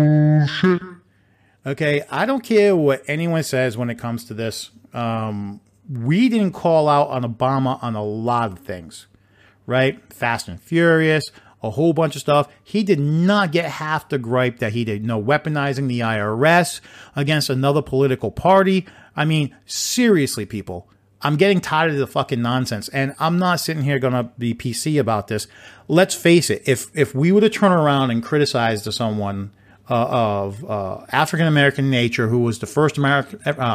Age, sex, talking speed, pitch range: 40-59, male, 175 wpm, 110-150 Hz